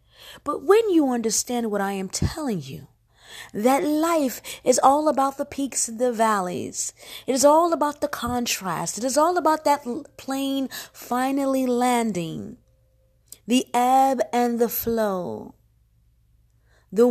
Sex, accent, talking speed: female, American, 135 wpm